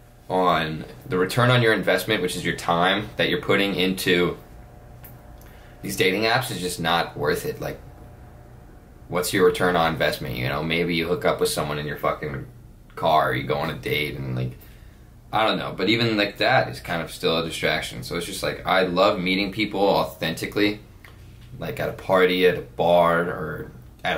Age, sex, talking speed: 20-39, male, 195 wpm